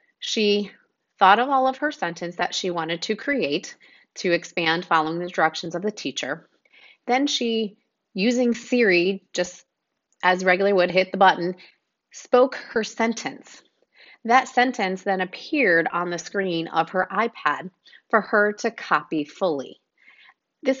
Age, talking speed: 30-49, 145 wpm